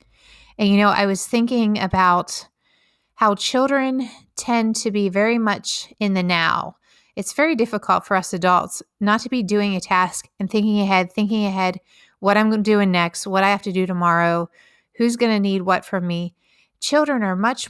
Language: English